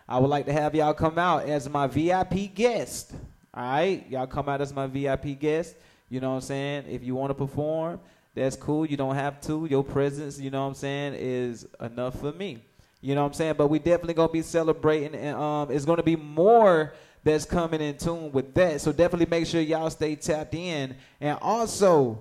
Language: English